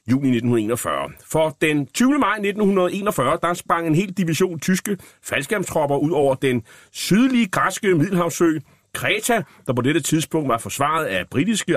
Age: 30-49